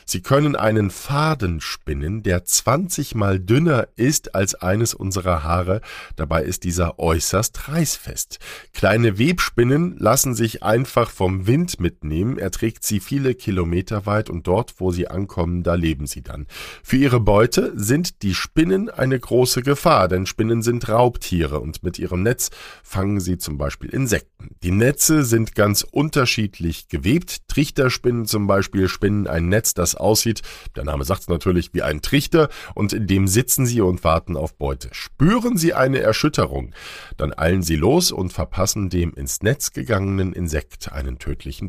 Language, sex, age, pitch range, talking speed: German, male, 50-69, 90-130 Hz, 160 wpm